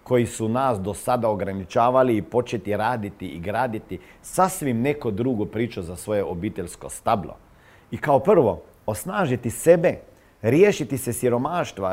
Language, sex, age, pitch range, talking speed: Croatian, male, 50-69, 100-125 Hz, 135 wpm